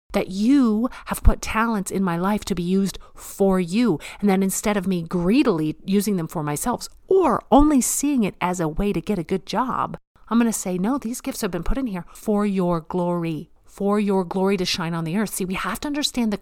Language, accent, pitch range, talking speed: English, American, 165-210 Hz, 235 wpm